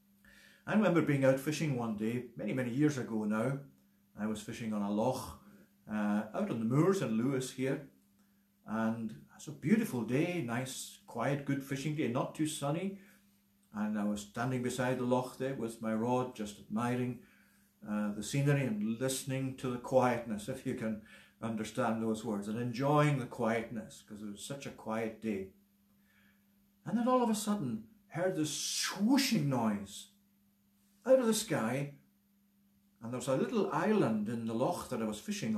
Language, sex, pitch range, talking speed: English, male, 115-180 Hz, 175 wpm